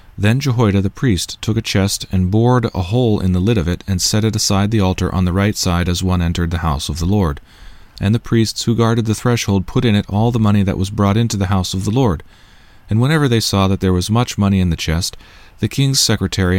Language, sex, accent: English, male, American